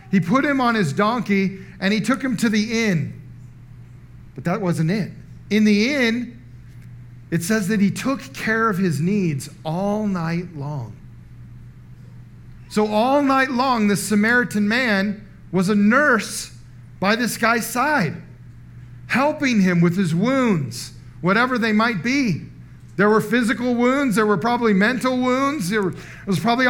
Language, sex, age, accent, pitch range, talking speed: English, male, 40-59, American, 165-235 Hz, 150 wpm